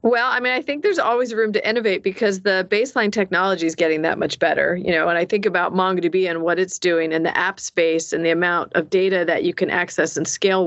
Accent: American